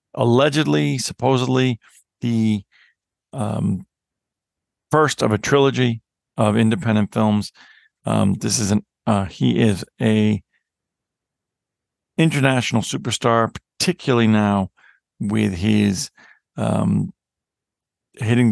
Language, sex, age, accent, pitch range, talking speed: English, male, 50-69, American, 105-120 Hz, 90 wpm